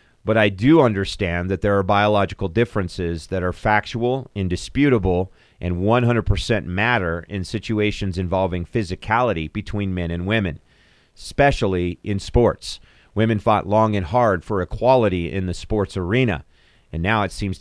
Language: English